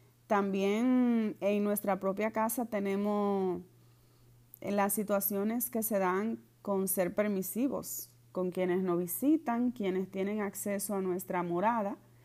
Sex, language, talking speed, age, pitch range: female, Spanish, 120 wpm, 30-49, 180-230 Hz